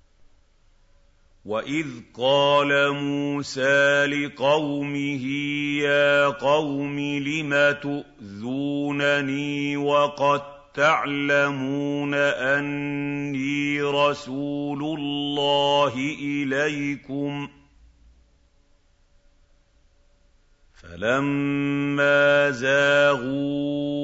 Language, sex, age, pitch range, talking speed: Arabic, male, 50-69, 130-145 Hz, 40 wpm